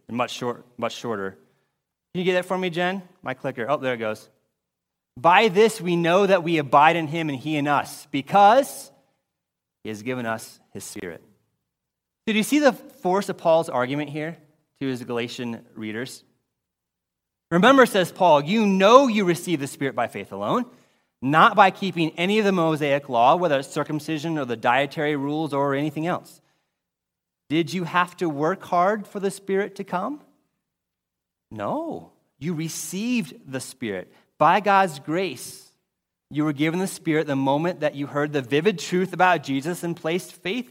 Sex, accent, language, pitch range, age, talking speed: male, American, English, 135-185 Hz, 30-49, 175 wpm